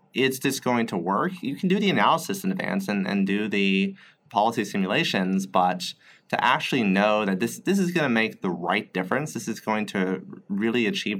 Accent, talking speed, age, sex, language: American, 205 wpm, 30-49, male, English